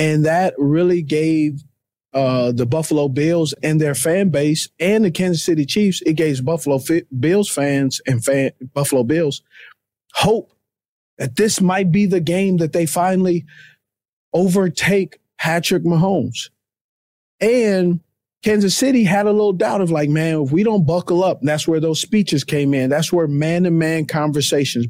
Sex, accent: male, American